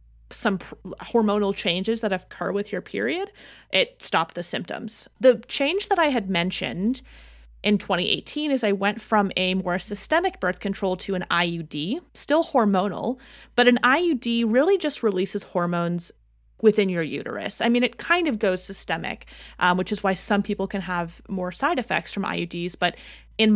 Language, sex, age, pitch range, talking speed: English, female, 30-49, 180-235 Hz, 170 wpm